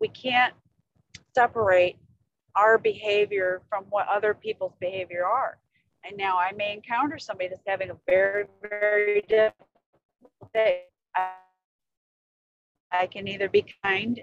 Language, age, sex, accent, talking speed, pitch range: English, 40-59, female, American, 125 wpm, 180-220 Hz